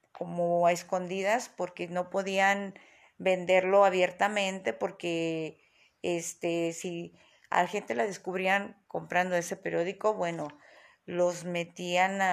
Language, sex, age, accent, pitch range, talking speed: Spanish, female, 40-59, Mexican, 175-200 Hz, 100 wpm